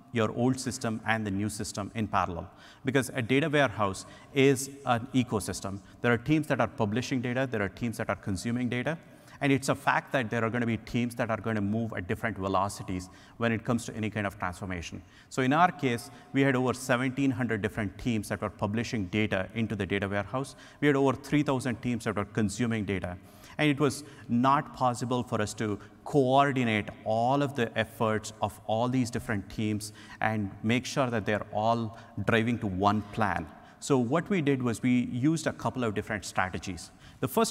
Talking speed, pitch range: 200 wpm, 105-130 Hz